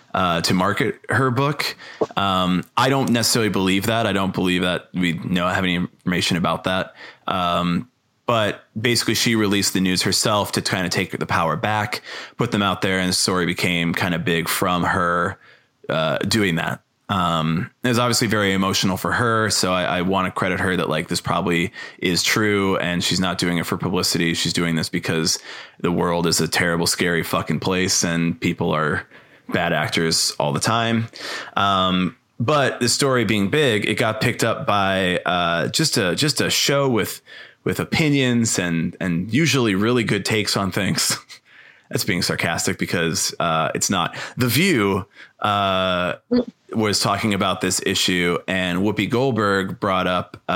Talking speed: 175 wpm